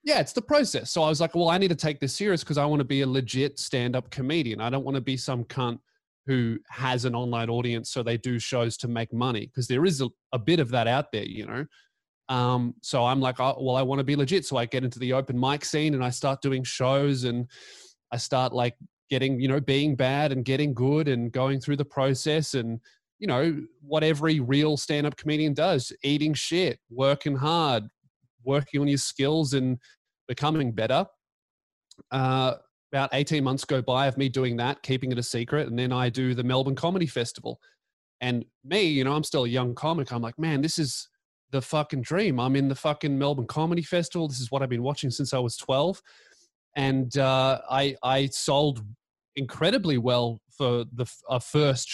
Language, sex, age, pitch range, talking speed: English, male, 20-39, 125-150 Hz, 210 wpm